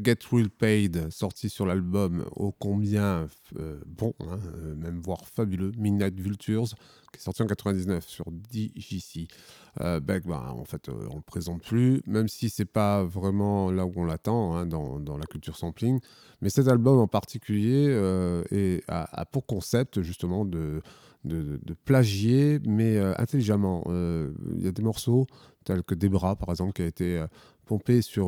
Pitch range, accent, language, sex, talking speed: 85-110 Hz, French, French, male, 180 wpm